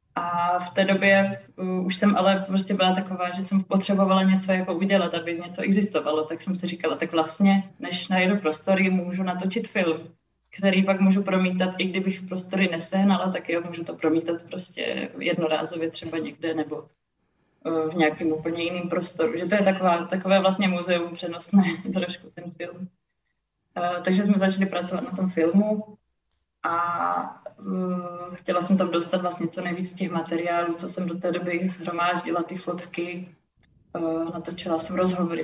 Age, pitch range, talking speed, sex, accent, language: 20-39, 165-190 Hz, 165 wpm, female, Czech, English